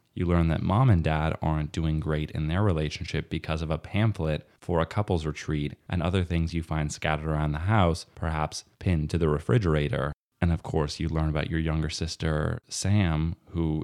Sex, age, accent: male, 20-39, American